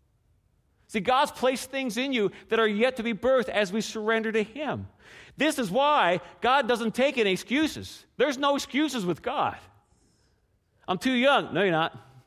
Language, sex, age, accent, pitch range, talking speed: English, male, 40-59, American, 190-260 Hz, 175 wpm